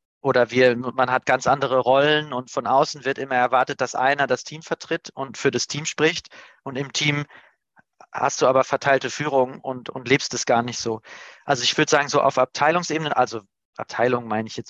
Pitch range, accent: 120-140 Hz, German